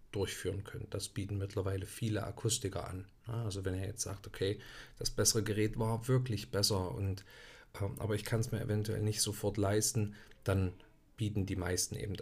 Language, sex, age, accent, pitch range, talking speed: German, male, 50-69, German, 100-120 Hz, 165 wpm